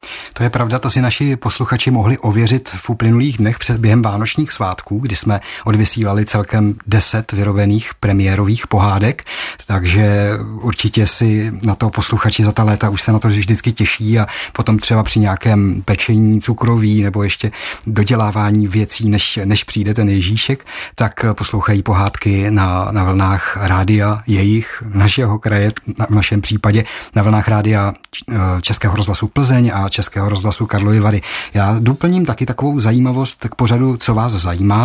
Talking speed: 155 wpm